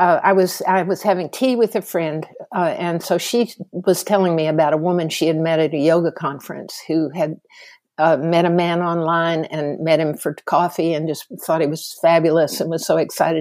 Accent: American